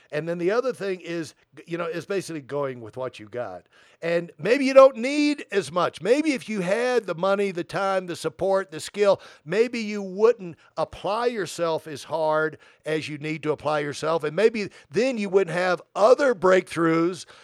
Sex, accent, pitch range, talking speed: male, American, 155-210 Hz, 190 wpm